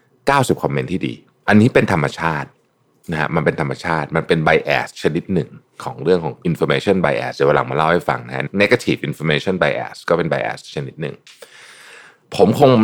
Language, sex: Thai, male